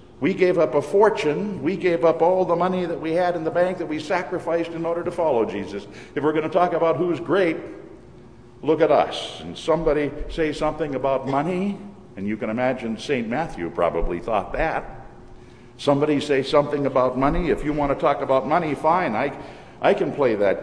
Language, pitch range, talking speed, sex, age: English, 125-170 Hz, 200 wpm, male, 60-79